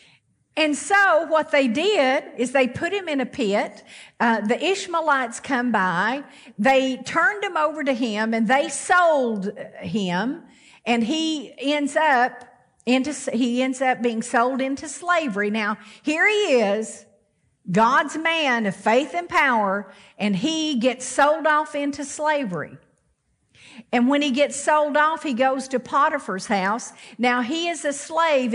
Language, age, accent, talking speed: English, 50-69, American, 150 wpm